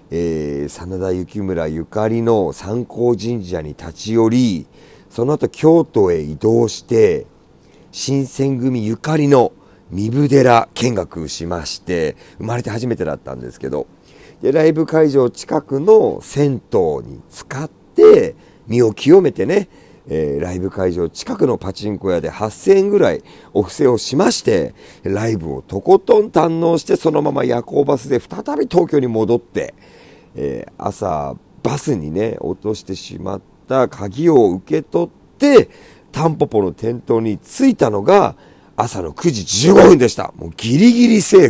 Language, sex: Japanese, male